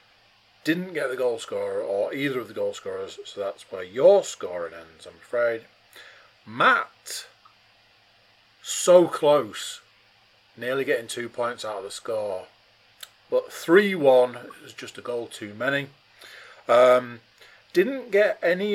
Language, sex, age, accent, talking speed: English, male, 40-59, British, 135 wpm